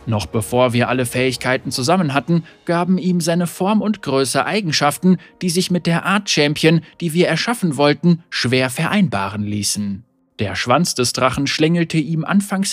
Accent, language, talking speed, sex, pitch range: German, German, 160 wpm, male, 125-180 Hz